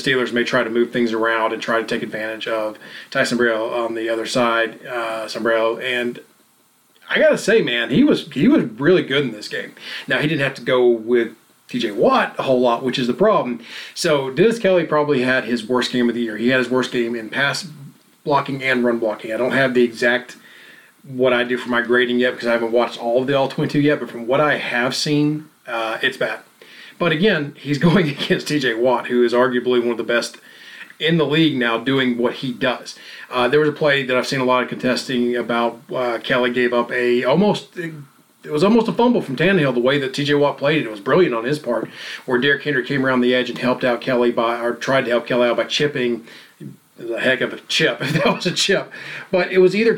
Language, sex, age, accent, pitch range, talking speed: English, male, 30-49, American, 120-145 Hz, 240 wpm